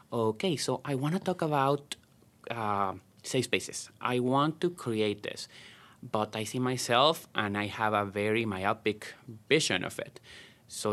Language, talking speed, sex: English, 160 wpm, male